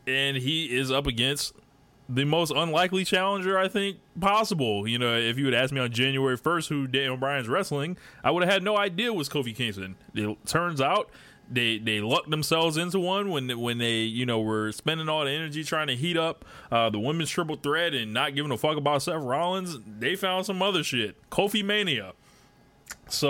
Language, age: English, 20-39